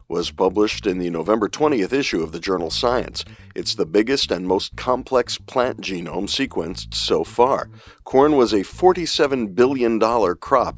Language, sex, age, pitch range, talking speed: English, male, 50-69, 95-115 Hz, 155 wpm